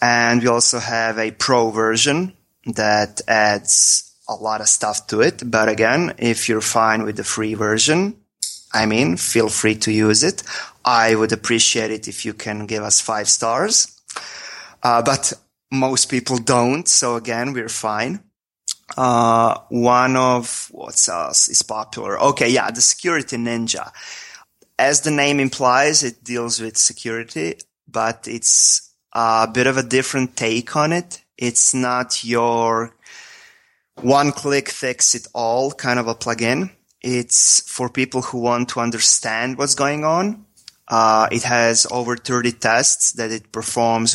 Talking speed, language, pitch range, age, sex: 150 wpm, English, 110-130 Hz, 30-49, male